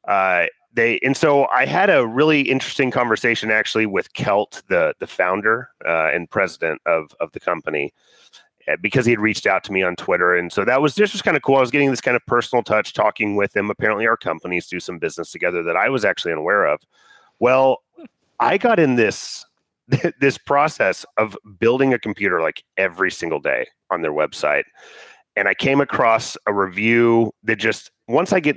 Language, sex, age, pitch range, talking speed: English, male, 30-49, 100-150 Hz, 195 wpm